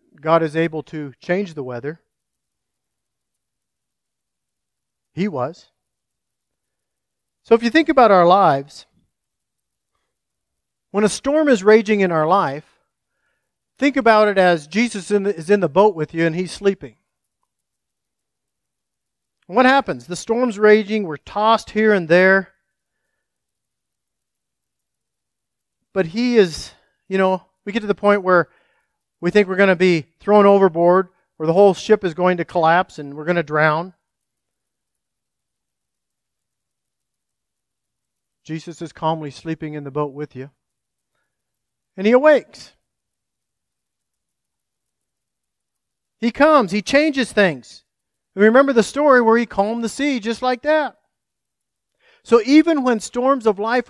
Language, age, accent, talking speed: English, 40-59, American, 125 wpm